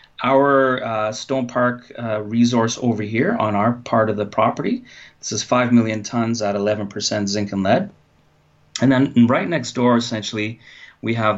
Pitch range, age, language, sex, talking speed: 105-120 Hz, 30-49, English, male, 170 wpm